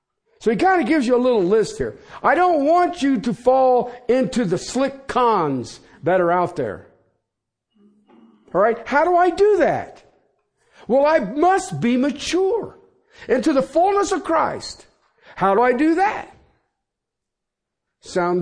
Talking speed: 155 wpm